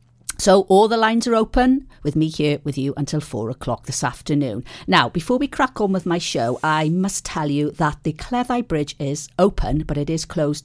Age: 50-69